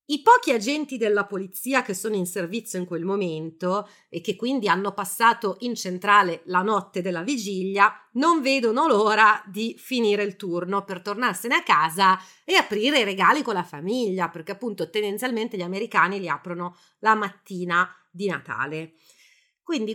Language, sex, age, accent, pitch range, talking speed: Italian, female, 30-49, native, 195-255 Hz, 160 wpm